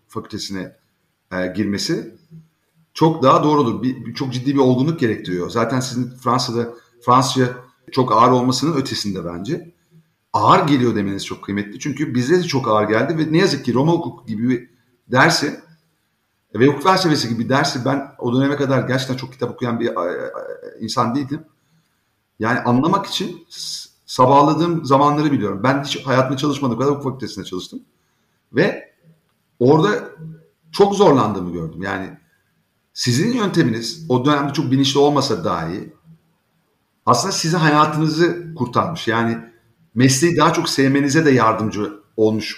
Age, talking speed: 50-69, 145 wpm